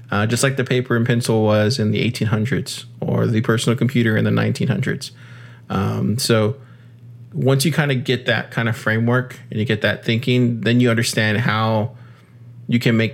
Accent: American